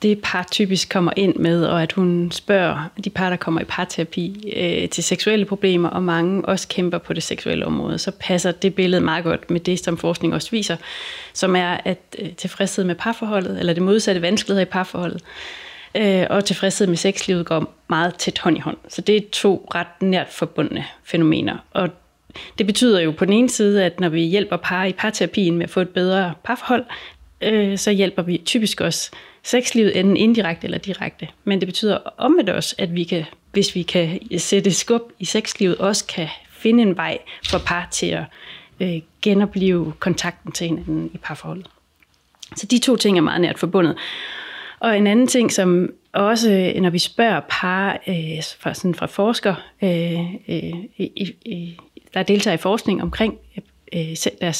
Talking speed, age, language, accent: 175 wpm, 30-49, Danish, native